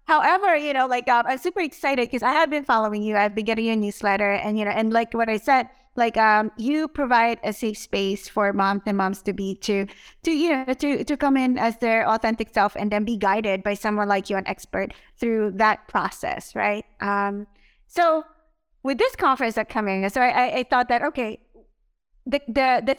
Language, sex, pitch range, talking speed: English, female, 210-285 Hz, 215 wpm